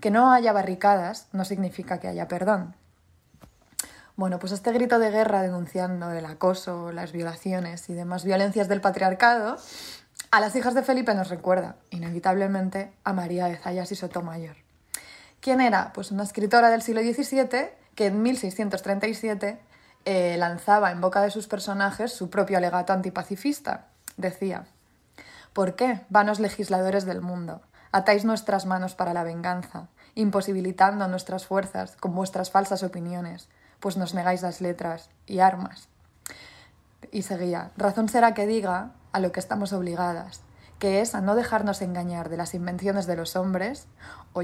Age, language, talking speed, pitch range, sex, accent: 20-39, Spanish, 150 wpm, 180-205 Hz, female, Spanish